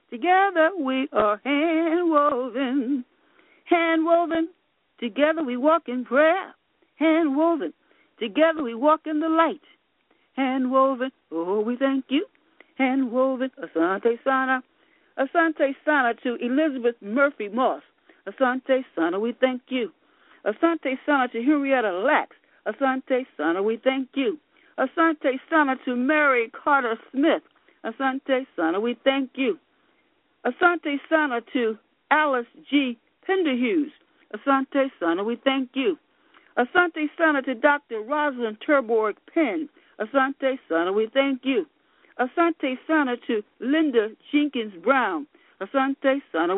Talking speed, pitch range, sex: 110 wpm, 255-320 Hz, female